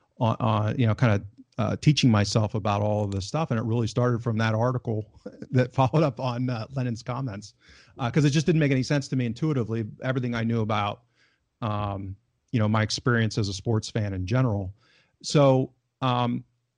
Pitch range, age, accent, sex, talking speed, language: 110-140 Hz, 40-59, American, male, 200 wpm, English